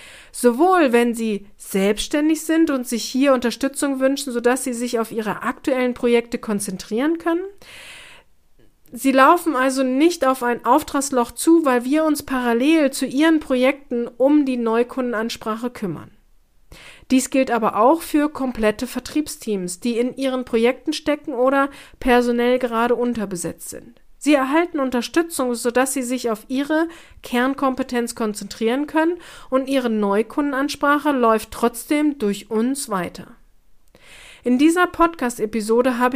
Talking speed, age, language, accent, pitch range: 130 wpm, 40-59, German, German, 235-290 Hz